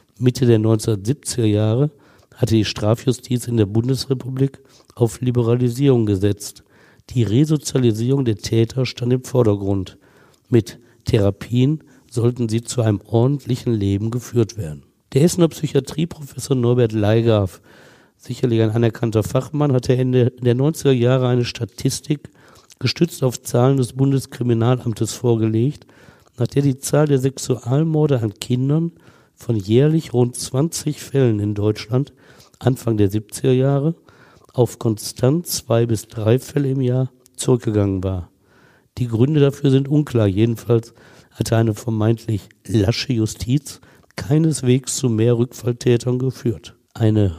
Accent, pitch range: German, 115-135 Hz